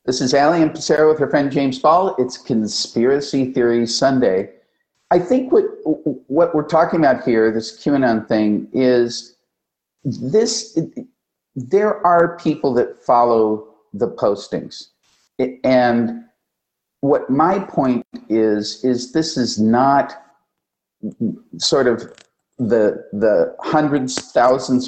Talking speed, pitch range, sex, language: 120 wpm, 115-155 Hz, male, English